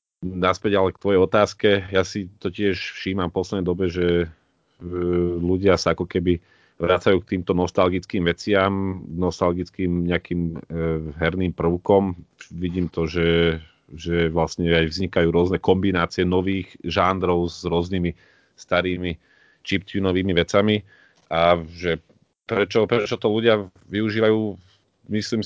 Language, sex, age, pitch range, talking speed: Slovak, male, 30-49, 85-95 Hz, 125 wpm